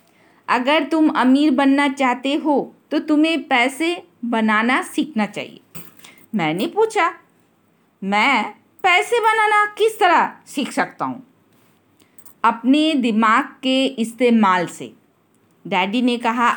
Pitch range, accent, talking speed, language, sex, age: 220-300 Hz, native, 110 wpm, Hindi, female, 50-69